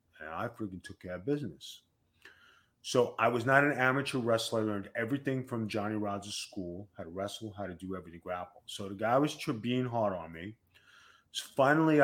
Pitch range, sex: 105-130 Hz, male